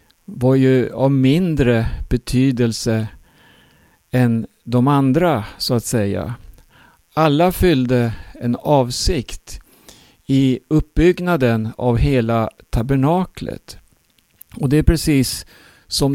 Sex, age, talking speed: male, 50-69, 95 wpm